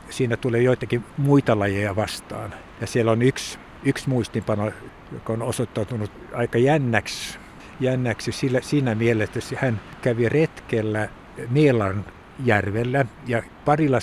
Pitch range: 110-130 Hz